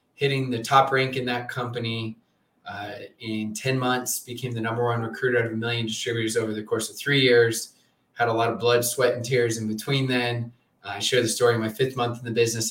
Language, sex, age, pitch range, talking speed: English, male, 20-39, 110-125 Hz, 230 wpm